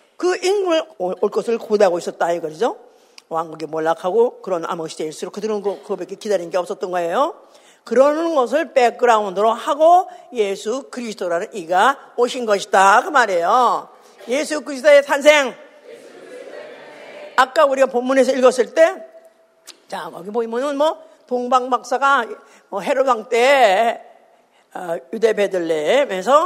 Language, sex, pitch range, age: Korean, female, 210-300 Hz, 50-69